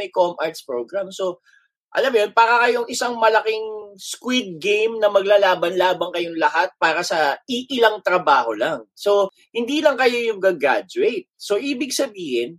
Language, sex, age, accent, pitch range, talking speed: Filipino, male, 20-39, native, 170-255 Hz, 150 wpm